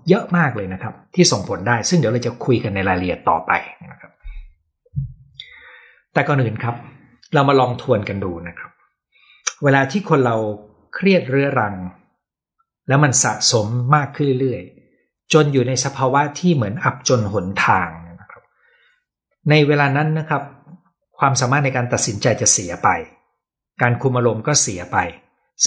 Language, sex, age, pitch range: Thai, male, 60-79, 110-150 Hz